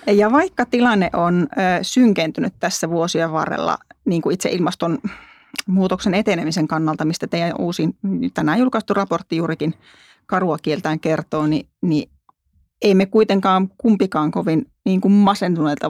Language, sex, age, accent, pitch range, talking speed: Finnish, female, 30-49, native, 165-205 Hz, 130 wpm